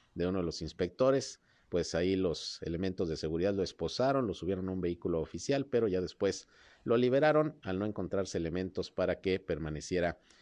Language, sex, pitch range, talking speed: Spanish, male, 85-110 Hz, 180 wpm